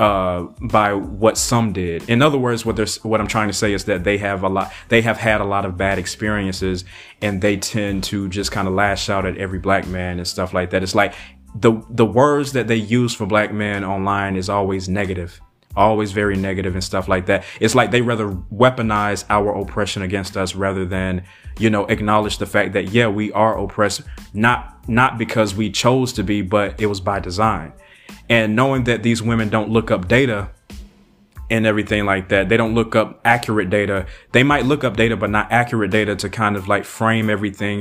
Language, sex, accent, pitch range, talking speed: English, male, American, 95-110 Hz, 215 wpm